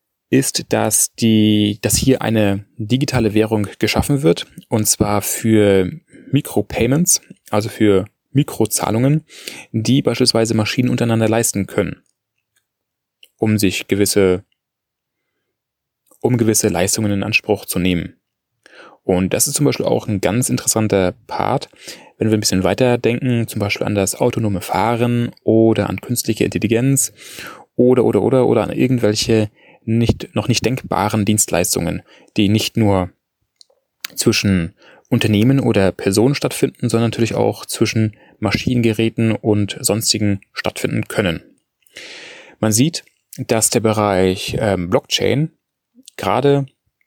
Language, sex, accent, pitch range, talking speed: German, male, German, 105-125 Hz, 120 wpm